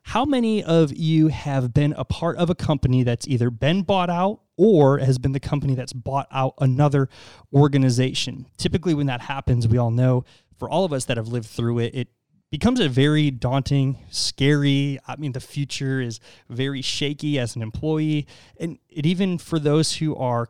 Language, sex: English, male